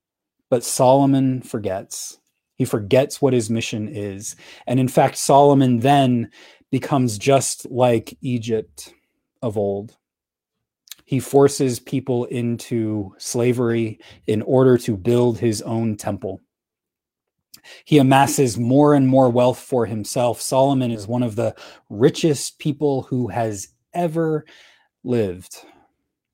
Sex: male